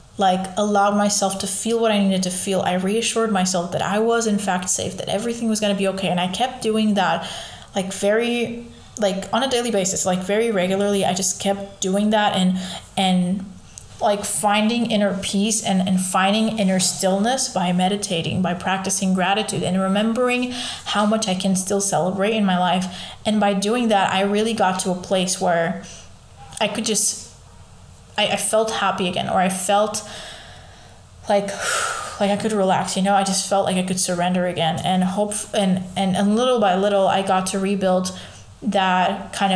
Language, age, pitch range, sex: English, 20-39, 185-205 Hz, female